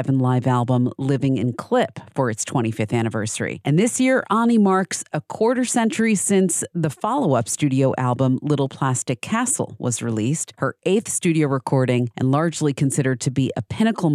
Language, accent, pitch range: English, American, 130-185 Hz